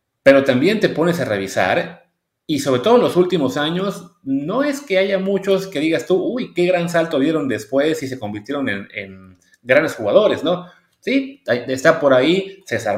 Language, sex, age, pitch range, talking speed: English, male, 30-49, 115-180 Hz, 185 wpm